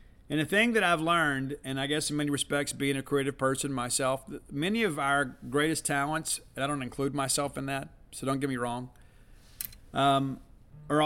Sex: male